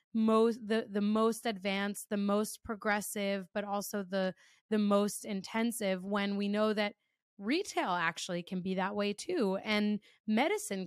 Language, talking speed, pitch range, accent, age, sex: English, 150 wpm, 195-220 Hz, American, 20-39, female